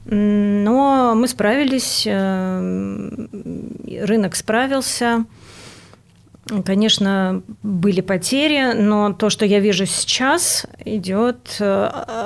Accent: native